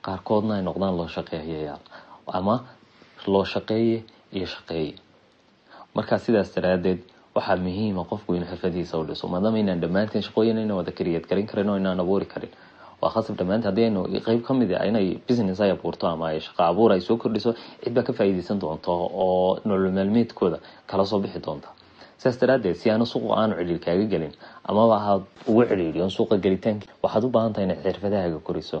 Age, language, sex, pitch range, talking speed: 30-49, English, male, 90-115 Hz, 70 wpm